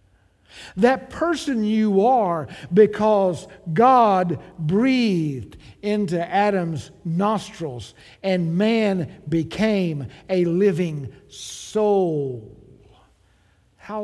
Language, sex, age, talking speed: English, male, 60-79, 75 wpm